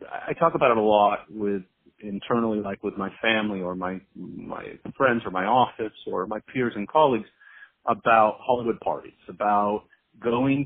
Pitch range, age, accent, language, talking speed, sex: 105-145 Hz, 40-59, American, English, 165 wpm, male